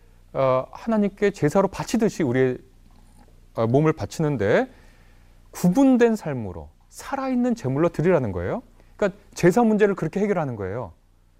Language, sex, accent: Korean, male, native